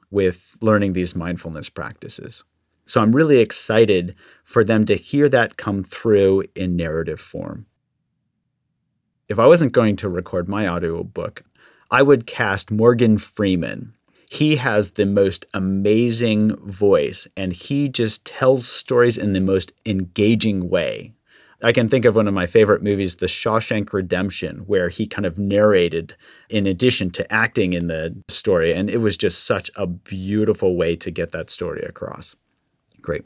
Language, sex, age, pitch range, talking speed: English, male, 40-59, 90-110 Hz, 155 wpm